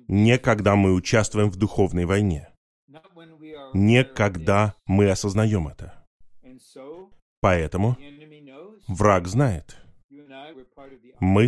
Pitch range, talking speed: 100-140 Hz, 85 wpm